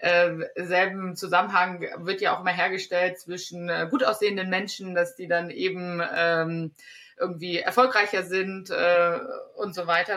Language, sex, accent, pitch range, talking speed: German, female, German, 175-205 Hz, 150 wpm